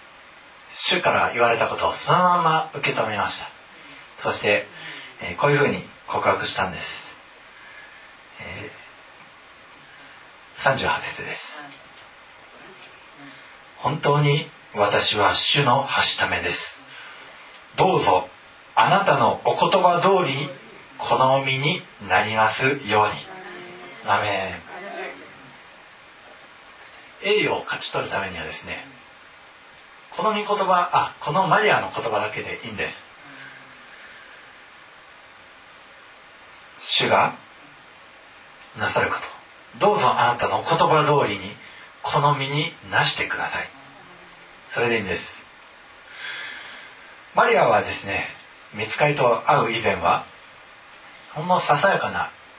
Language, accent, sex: Japanese, native, male